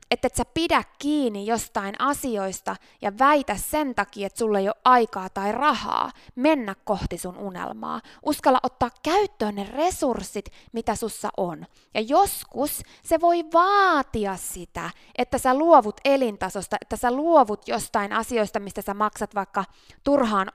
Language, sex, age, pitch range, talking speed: Finnish, female, 20-39, 200-275 Hz, 145 wpm